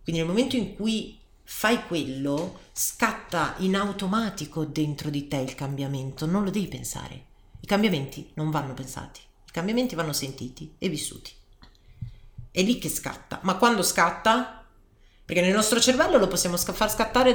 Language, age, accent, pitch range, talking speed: Italian, 40-59, native, 140-210 Hz, 155 wpm